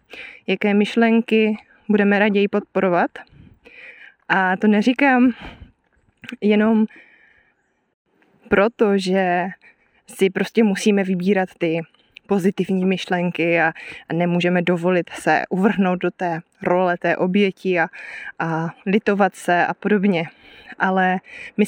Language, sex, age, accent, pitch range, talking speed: Czech, female, 20-39, native, 180-220 Hz, 100 wpm